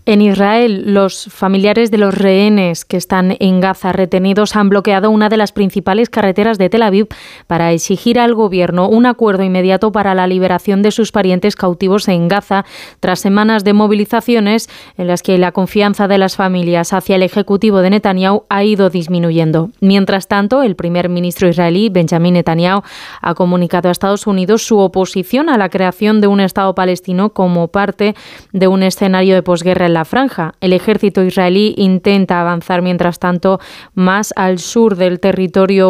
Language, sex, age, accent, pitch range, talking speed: Spanish, female, 20-39, Spanish, 185-215 Hz, 170 wpm